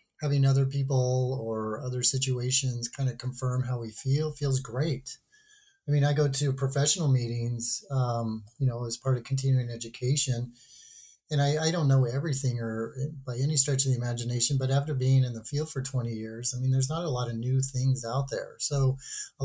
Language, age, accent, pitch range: English, 30-49, American, 120-140 Hz